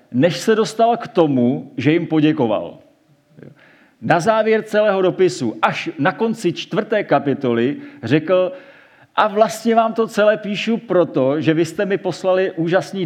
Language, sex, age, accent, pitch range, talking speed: Czech, male, 40-59, native, 140-195 Hz, 145 wpm